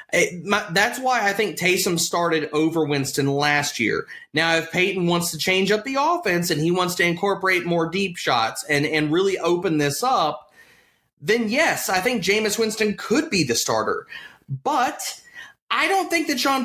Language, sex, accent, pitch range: English, male, American, 165-235 Hz